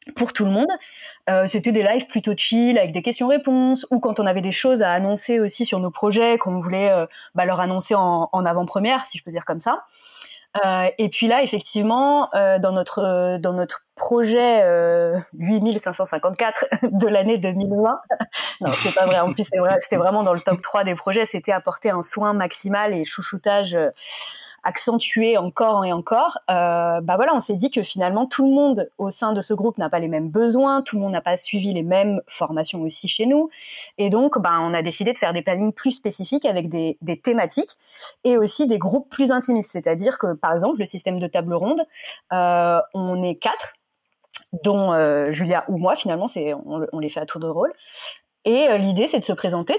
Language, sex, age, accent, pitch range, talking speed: French, female, 20-39, French, 180-230 Hz, 210 wpm